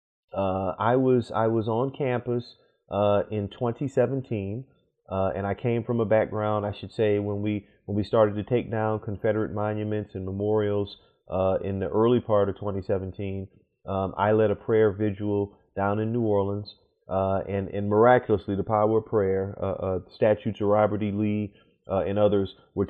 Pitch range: 95-110 Hz